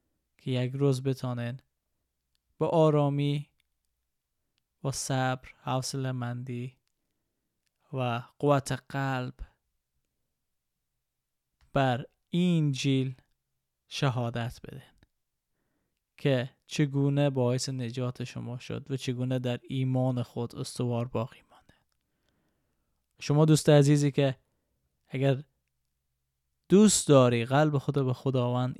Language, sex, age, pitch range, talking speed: Persian, male, 20-39, 120-145 Hz, 85 wpm